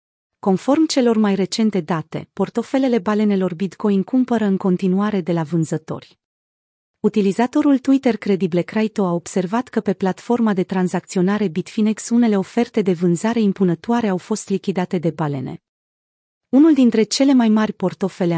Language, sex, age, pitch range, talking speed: Romanian, female, 30-49, 180-220 Hz, 135 wpm